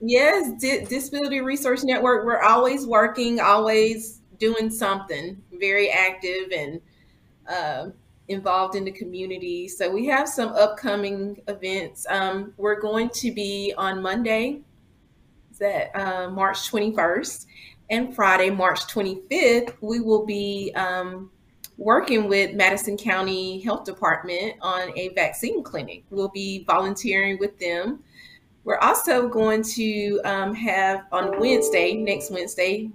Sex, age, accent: female, 30-49, American